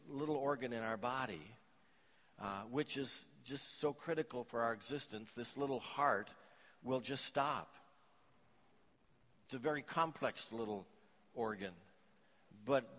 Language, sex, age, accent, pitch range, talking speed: English, male, 60-79, American, 135-165 Hz, 125 wpm